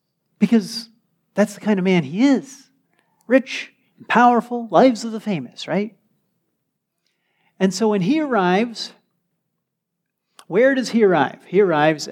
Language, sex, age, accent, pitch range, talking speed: English, male, 40-59, American, 155-205 Hz, 130 wpm